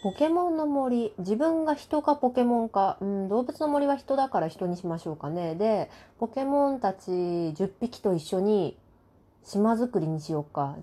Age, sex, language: 20-39, female, Japanese